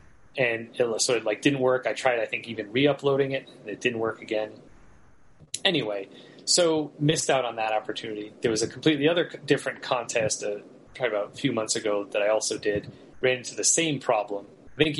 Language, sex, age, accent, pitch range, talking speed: English, male, 30-49, American, 110-145 Hz, 205 wpm